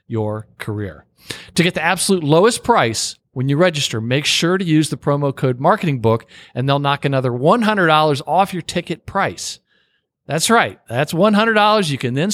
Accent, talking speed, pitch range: American, 170 wpm, 125-175 Hz